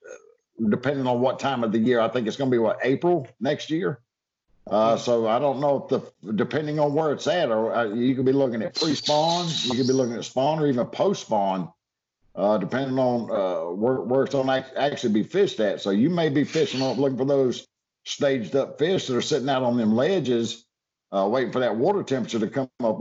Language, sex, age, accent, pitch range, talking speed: English, male, 60-79, American, 120-160 Hz, 225 wpm